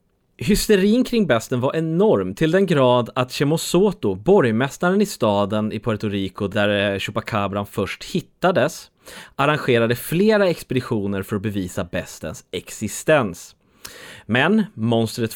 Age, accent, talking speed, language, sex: 30-49, Swedish, 115 wpm, English, male